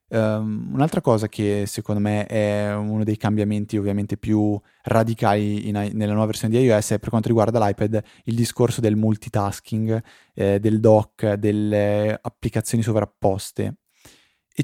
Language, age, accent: Italian, 20-39, native